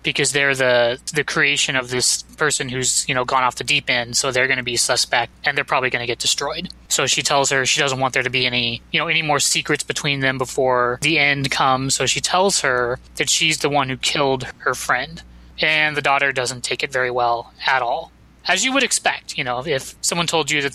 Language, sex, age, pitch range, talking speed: English, male, 20-39, 135-175 Hz, 245 wpm